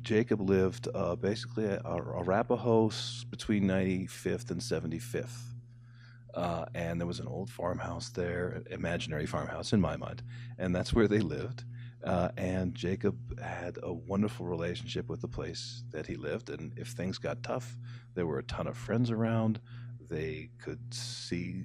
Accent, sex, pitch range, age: American, male, 95-120 Hz, 40-59